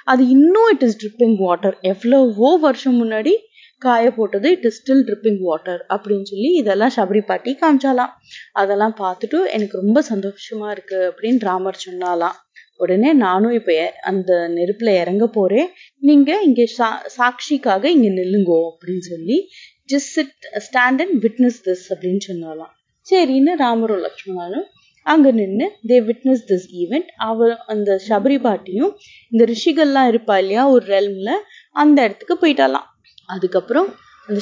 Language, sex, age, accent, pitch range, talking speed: Tamil, female, 30-49, native, 190-265 Hz, 130 wpm